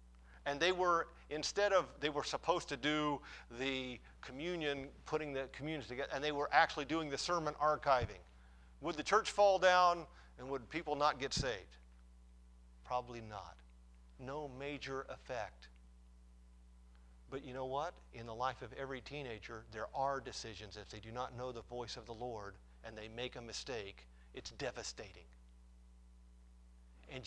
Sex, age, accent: male, 50-69, American